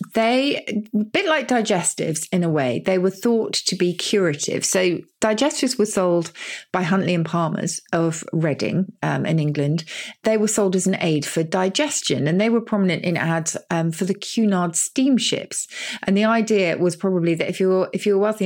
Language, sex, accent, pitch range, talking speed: English, female, British, 160-205 Hz, 185 wpm